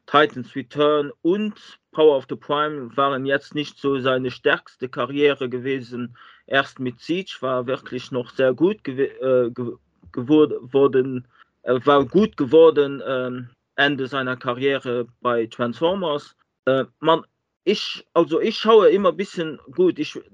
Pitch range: 130-160 Hz